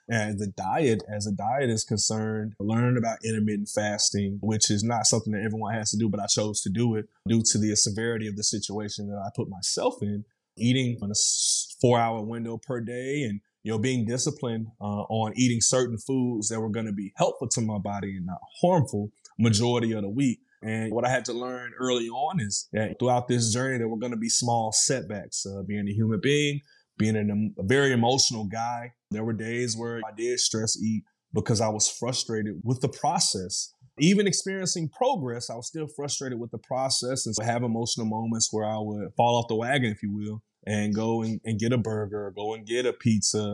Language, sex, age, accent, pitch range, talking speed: English, male, 20-39, American, 105-125 Hz, 220 wpm